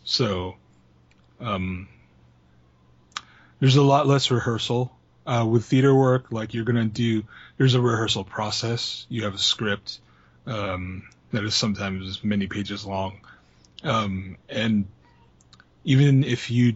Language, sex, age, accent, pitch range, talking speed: English, male, 30-49, American, 100-115 Hz, 130 wpm